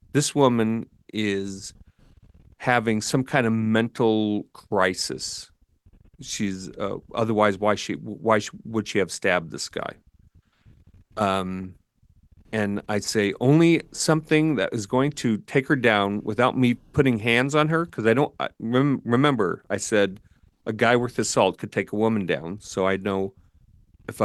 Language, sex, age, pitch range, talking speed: English, male, 40-59, 100-130 Hz, 150 wpm